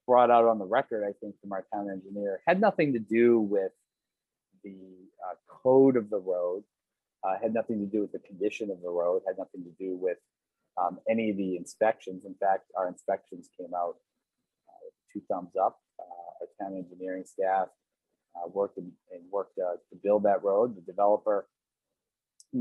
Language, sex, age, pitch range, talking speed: English, male, 30-49, 95-110 Hz, 190 wpm